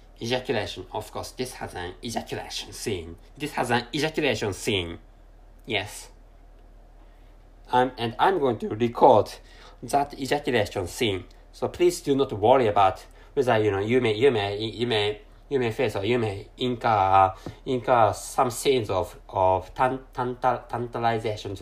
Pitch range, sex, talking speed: 95-130 Hz, male, 150 wpm